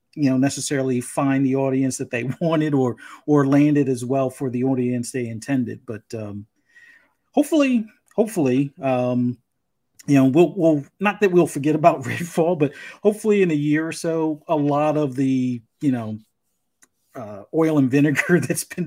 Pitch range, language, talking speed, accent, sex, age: 130-155 Hz, English, 170 wpm, American, male, 40-59